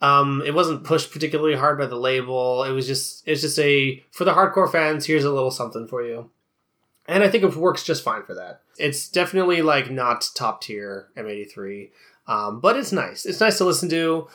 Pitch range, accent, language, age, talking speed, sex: 130-180 Hz, American, English, 20-39, 210 wpm, male